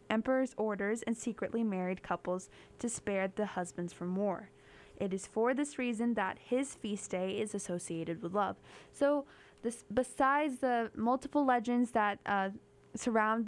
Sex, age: female, 10-29